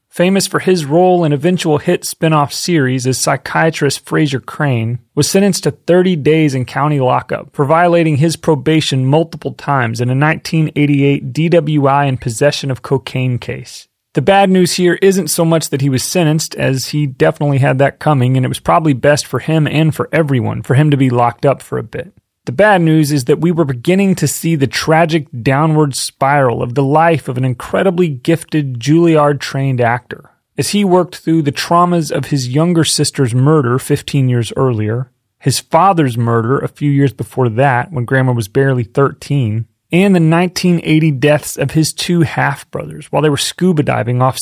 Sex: male